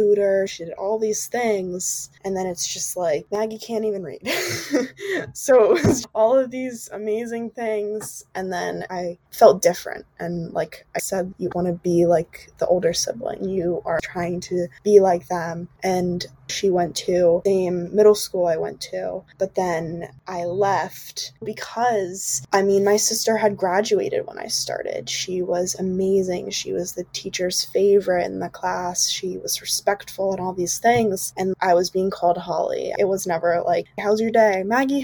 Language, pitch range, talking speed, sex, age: English, 175-220 Hz, 175 wpm, female, 10-29